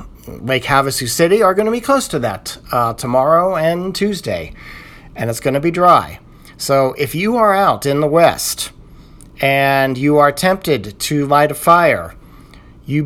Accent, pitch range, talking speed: American, 120-155 Hz, 170 wpm